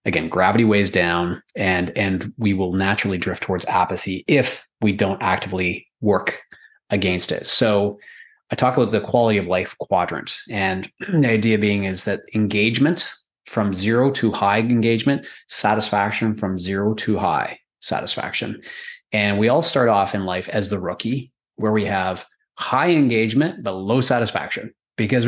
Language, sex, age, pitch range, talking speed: English, male, 30-49, 100-125 Hz, 155 wpm